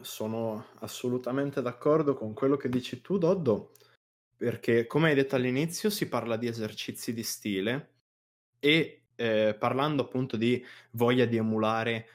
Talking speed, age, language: 140 wpm, 20-39, Italian